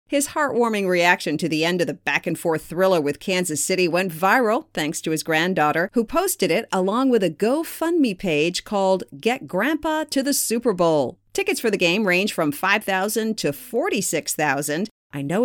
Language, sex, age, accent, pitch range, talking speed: English, female, 40-59, American, 165-250 Hz, 175 wpm